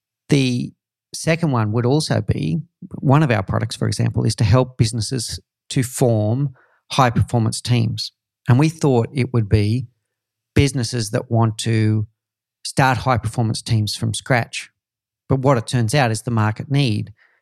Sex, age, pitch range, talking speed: male, 40-59, 110-135 Hz, 160 wpm